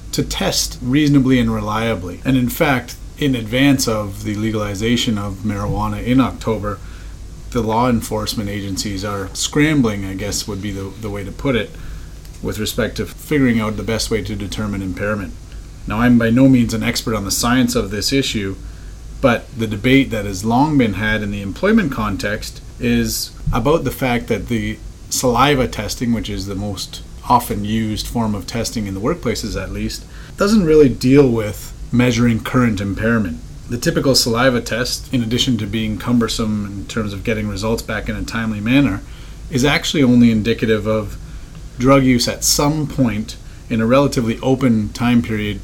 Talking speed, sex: 175 wpm, male